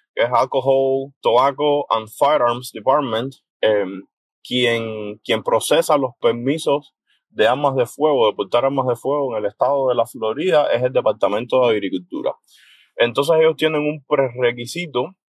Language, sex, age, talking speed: Spanish, male, 20-39, 150 wpm